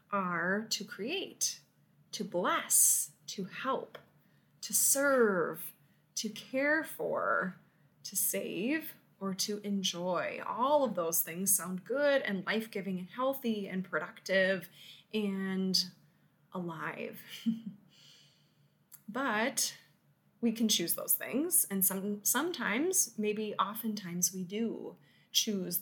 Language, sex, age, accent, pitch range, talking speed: English, female, 20-39, American, 175-230 Hz, 100 wpm